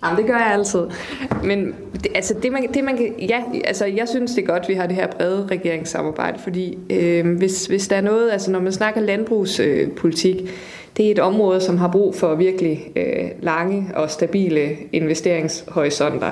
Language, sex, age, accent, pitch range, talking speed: Danish, female, 20-39, native, 165-195 Hz, 190 wpm